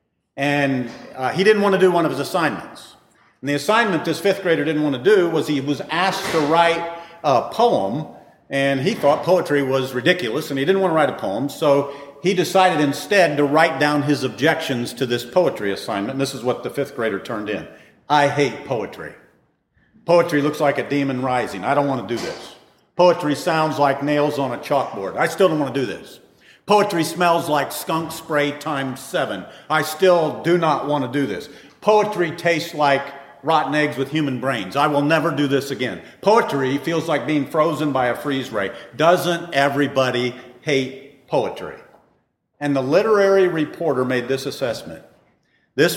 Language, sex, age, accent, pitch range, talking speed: English, male, 50-69, American, 140-170 Hz, 190 wpm